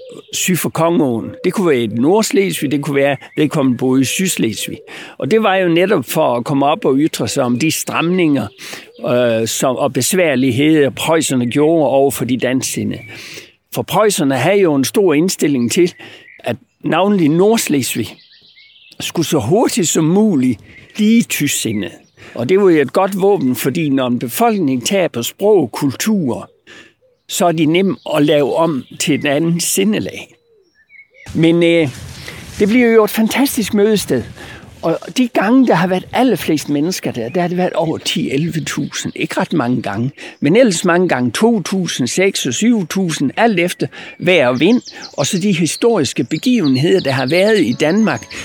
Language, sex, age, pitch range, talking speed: Danish, male, 60-79, 140-210 Hz, 165 wpm